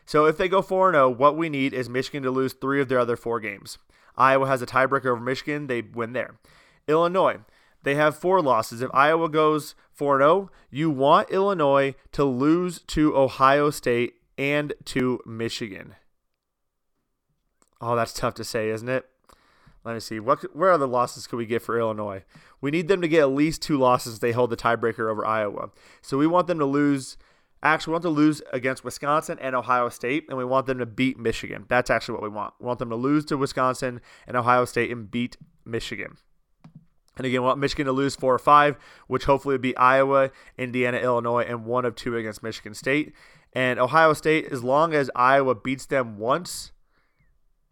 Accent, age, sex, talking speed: American, 30-49, male, 195 wpm